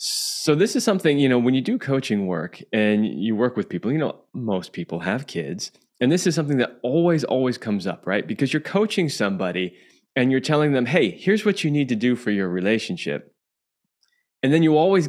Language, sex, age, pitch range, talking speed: English, male, 20-39, 110-165 Hz, 215 wpm